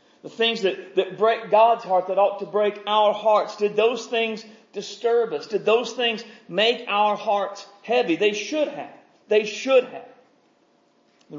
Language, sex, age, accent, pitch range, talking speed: English, male, 40-59, American, 180-225 Hz, 170 wpm